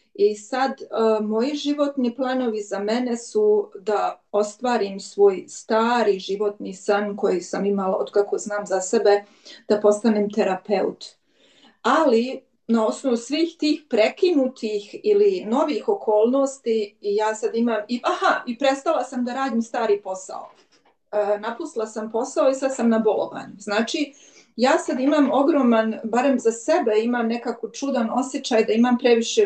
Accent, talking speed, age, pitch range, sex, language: native, 140 wpm, 40-59, 215-270 Hz, female, Croatian